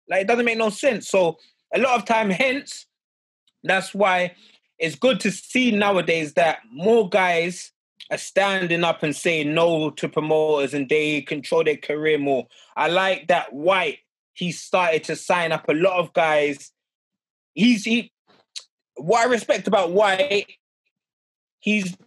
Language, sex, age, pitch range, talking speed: English, male, 20-39, 170-225 Hz, 155 wpm